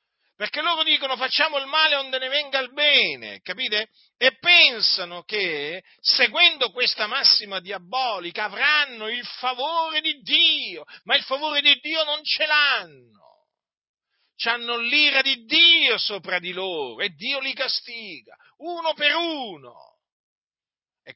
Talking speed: 135 wpm